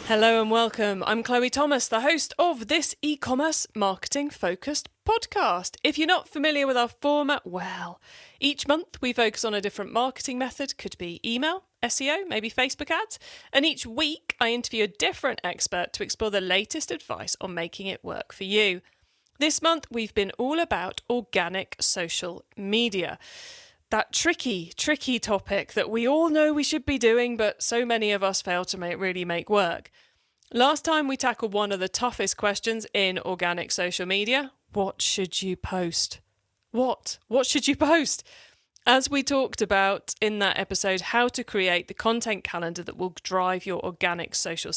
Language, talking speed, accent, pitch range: English, 175 wpm, British, 195-290 Hz